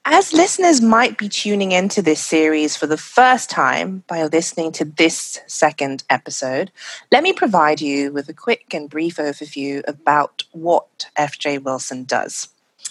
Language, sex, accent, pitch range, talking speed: English, female, British, 145-200 Hz, 155 wpm